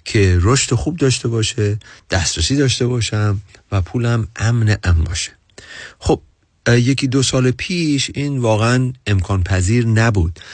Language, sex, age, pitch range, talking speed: Persian, male, 40-59, 90-120 Hz, 130 wpm